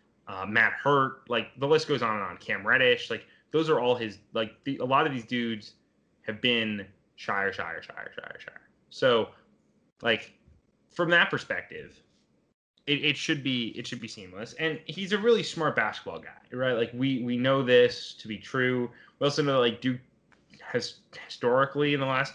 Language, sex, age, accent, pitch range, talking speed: English, male, 20-39, American, 120-155 Hz, 190 wpm